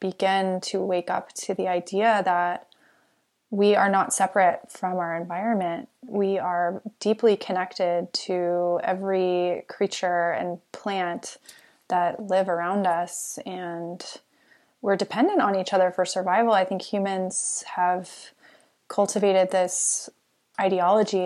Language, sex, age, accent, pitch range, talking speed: English, female, 20-39, American, 180-215 Hz, 120 wpm